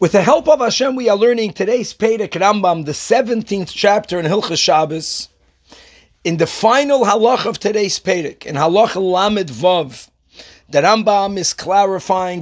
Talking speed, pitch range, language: 155 wpm, 165-210 Hz, English